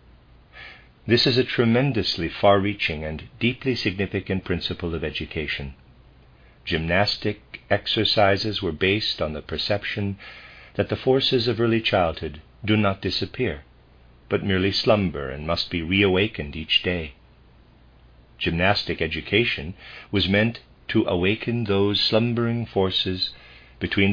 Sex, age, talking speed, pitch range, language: male, 50-69, 115 wpm, 65-105 Hz, English